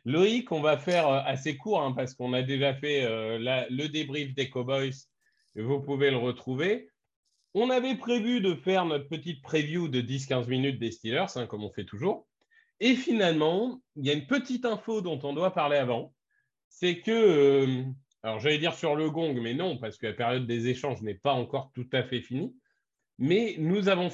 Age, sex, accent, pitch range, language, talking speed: 30-49, male, French, 130-175 Hz, French, 200 wpm